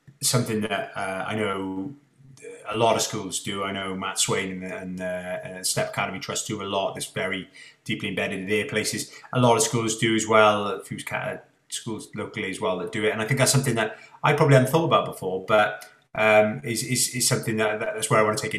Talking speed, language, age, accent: 235 wpm, English, 30-49, British